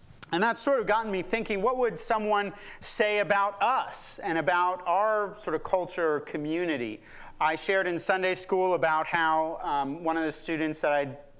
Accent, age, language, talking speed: American, 40-59, English, 185 wpm